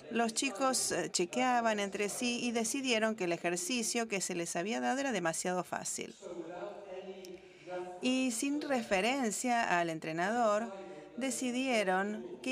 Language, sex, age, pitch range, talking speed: English, female, 40-59, 170-220 Hz, 120 wpm